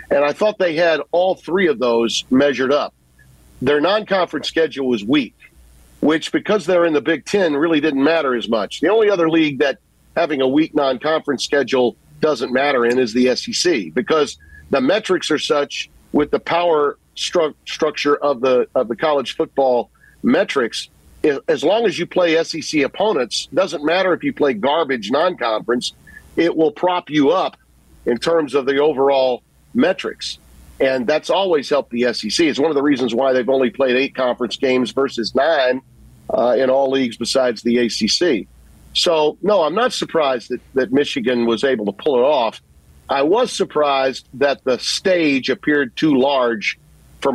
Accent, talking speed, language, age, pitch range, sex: American, 175 wpm, English, 50-69, 125-160 Hz, male